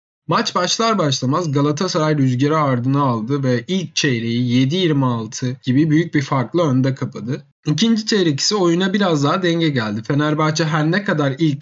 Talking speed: 155 wpm